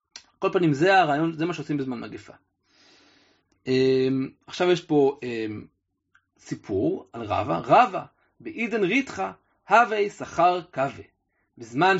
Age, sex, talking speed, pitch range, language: 30-49, male, 110 wpm, 130-195 Hz, Hebrew